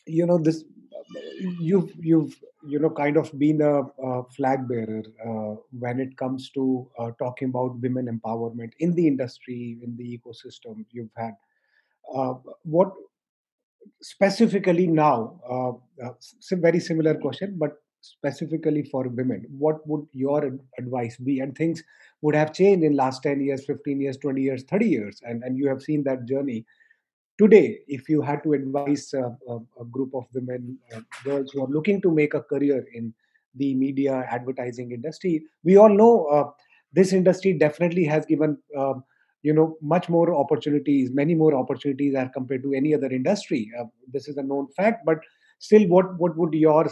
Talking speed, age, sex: 175 wpm, 30-49, male